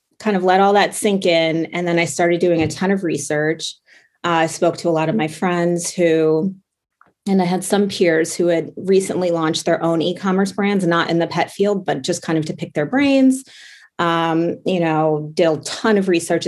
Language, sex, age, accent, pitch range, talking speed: English, female, 30-49, American, 155-185 Hz, 220 wpm